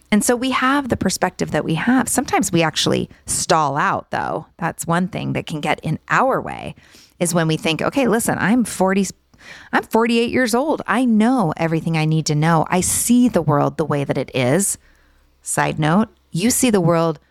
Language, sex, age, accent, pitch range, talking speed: English, female, 30-49, American, 150-205 Hz, 200 wpm